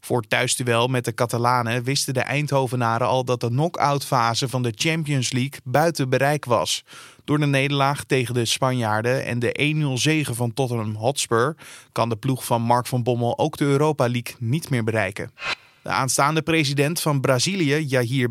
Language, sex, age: Dutch, male, 20-39